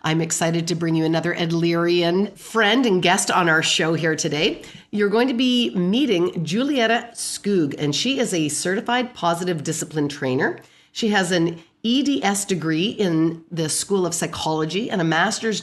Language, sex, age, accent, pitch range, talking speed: English, female, 40-59, American, 160-210 Hz, 165 wpm